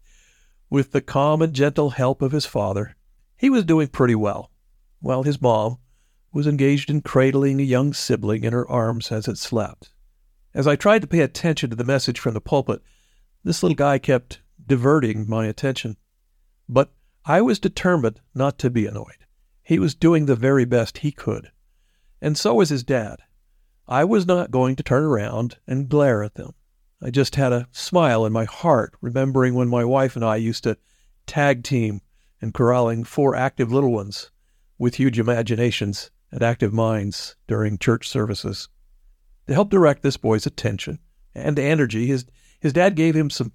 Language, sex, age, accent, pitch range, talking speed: English, male, 50-69, American, 115-145 Hz, 175 wpm